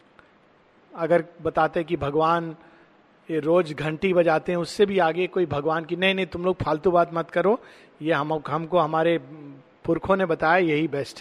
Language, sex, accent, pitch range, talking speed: Hindi, male, native, 170-215 Hz, 170 wpm